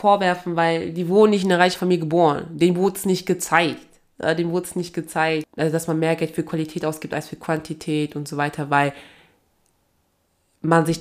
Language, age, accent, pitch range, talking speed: German, 20-39, German, 150-170 Hz, 195 wpm